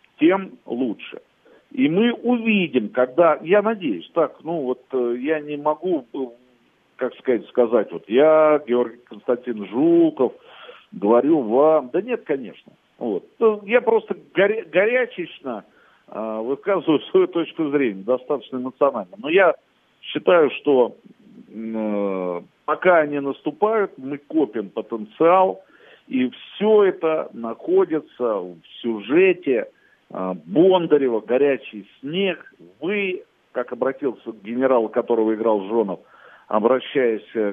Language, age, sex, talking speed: Russian, 50-69, male, 105 wpm